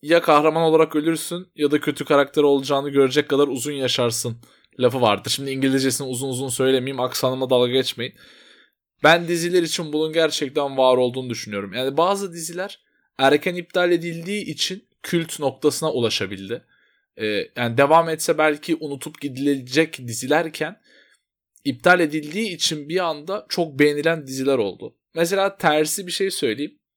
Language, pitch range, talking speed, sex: Turkish, 135-165 Hz, 140 wpm, male